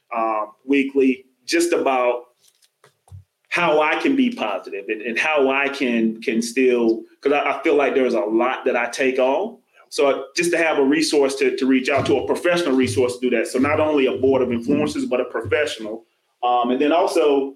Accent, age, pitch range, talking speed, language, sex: American, 30-49, 125-145 Hz, 200 wpm, English, male